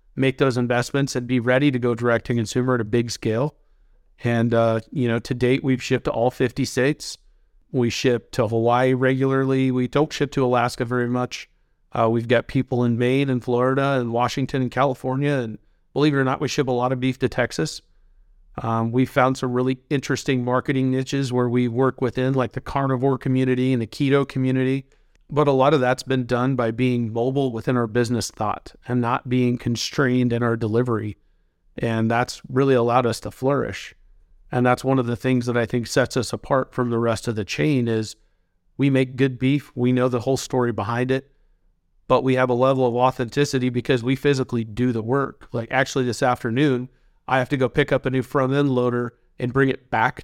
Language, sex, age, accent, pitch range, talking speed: English, male, 40-59, American, 120-130 Hz, 210 wpm